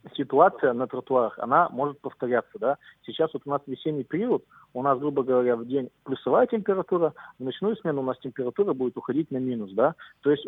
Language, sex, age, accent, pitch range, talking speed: Russian, male, 40-59, native, 120-145 Hz, 195 wpm